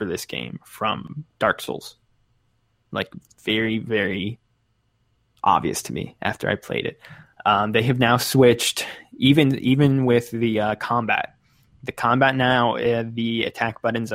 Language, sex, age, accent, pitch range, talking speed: English, male, 20-39, American, 110-125 Hz, 145 wpm